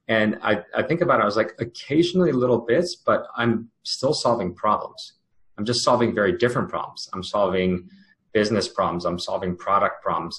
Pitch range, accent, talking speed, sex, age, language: 90-110 Hz, American, 180 wpm, male, 30-49, English